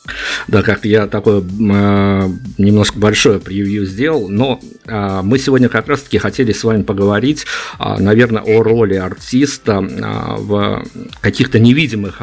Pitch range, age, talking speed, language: 100-115 Hz, 50-69, 140 wpm, Russian